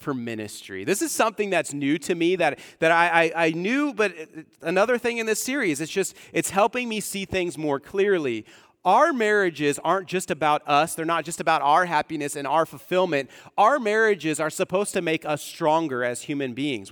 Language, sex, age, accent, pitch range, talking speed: English, male, 30-49, American, 150-195 Hz, 200 wpm